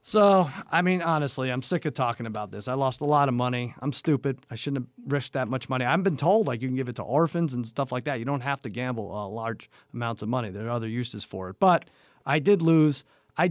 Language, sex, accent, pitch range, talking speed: English, male, American, 125-170 Hz, 265 wpm